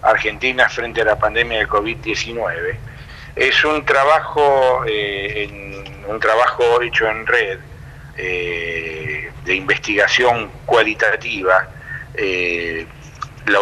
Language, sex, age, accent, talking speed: Spanish, male, 50-69, Argentinian, 100 wpm